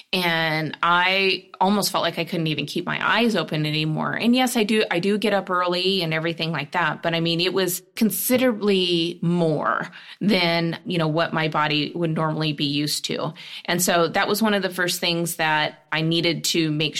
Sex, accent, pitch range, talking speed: female, American, 160-195 Hz, 205 wpm